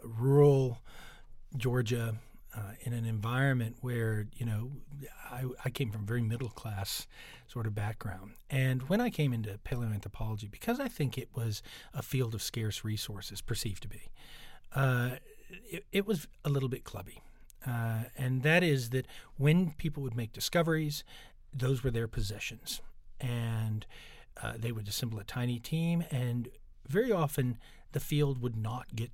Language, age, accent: English, 40-59, American